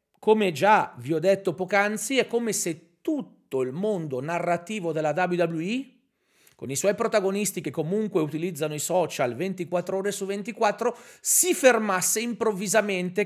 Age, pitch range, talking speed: 40-59, 155-225 Hz, 140 wpm